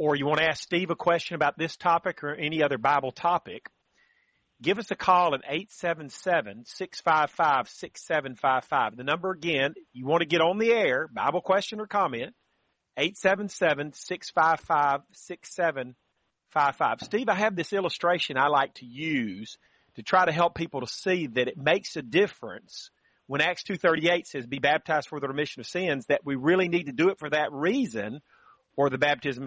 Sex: male